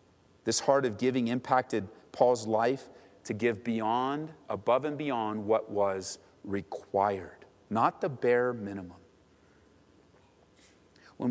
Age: 40-59